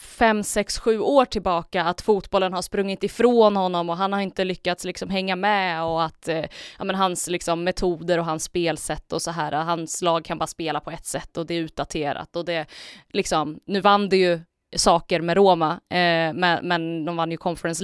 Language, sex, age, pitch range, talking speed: Swedish, female, 20-39, 160-195 Hz, 200 wpm